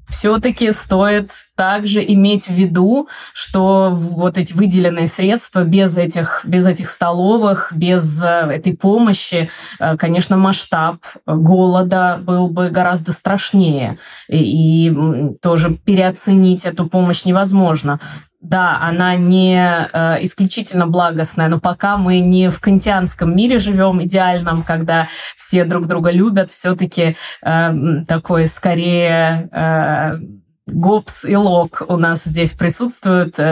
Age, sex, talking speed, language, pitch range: 20-39, female, 115 wpm, Russian, 165-200 Hz